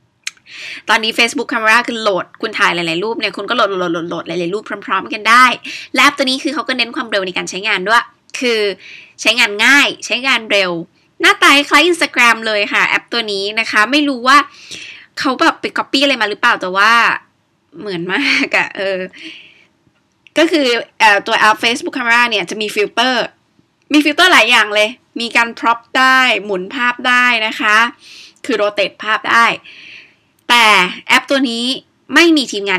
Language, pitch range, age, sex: Thai, 195-265 Hz, 20-39, female